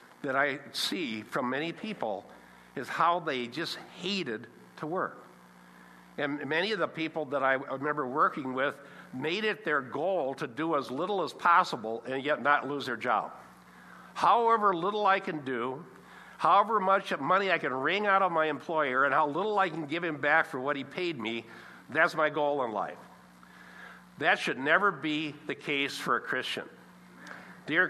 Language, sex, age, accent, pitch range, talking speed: English, male, 60-79, American, 120-185 Hz, 175 wpm